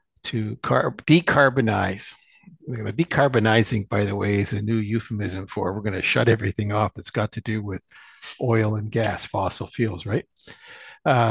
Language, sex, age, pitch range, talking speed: English, male, 60-79, 105-135 Hz, 160 wpm